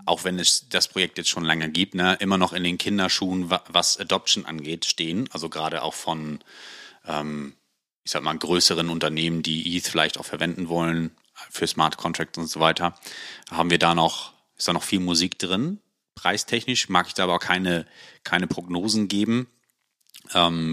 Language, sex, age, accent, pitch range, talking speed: German, male, 30-49, German, 85-120 Hz, 175 wpm